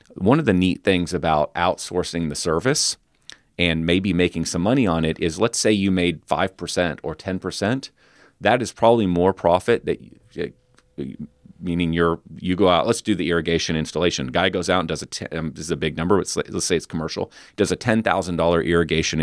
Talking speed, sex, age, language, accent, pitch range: 200 wpm, male, 40-59, English, American, 80-95 Hz